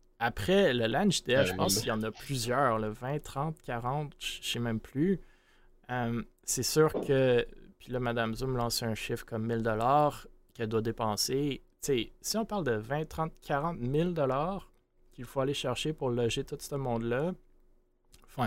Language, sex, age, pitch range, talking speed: French, male, 20-39, 110-135 Hz, 185 wpm